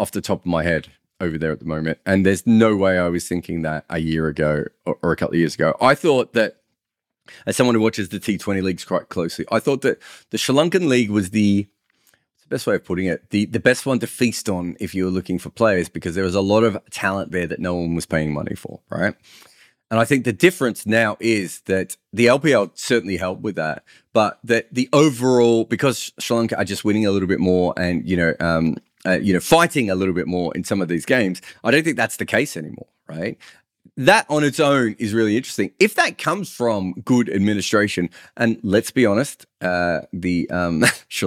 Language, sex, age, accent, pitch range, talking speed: English, male, 30-49, Australian, 90-115 Hz, 230 wpm